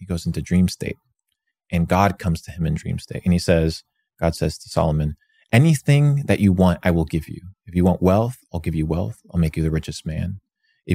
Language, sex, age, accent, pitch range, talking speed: English, male, 30-49, American, 85-105 Hz, 235 wpm